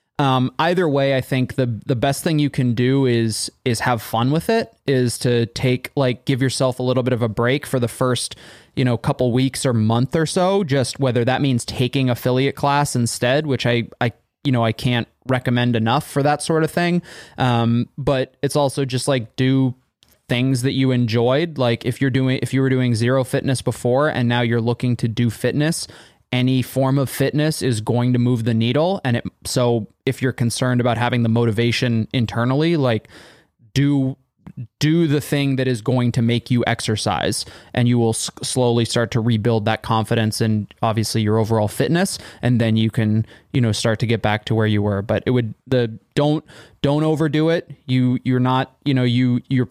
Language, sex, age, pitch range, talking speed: English, male, 20-39, 115-135 Hz, 200 wpm